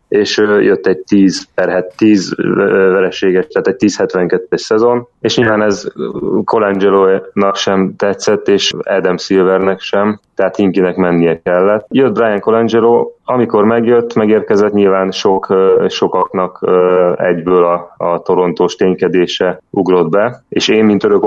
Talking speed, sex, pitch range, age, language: 125 wpm, male, 95-105 Hz, 30-49, Hungarian